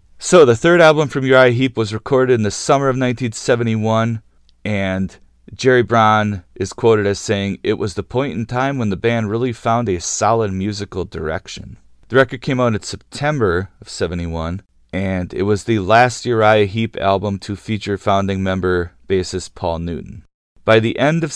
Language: English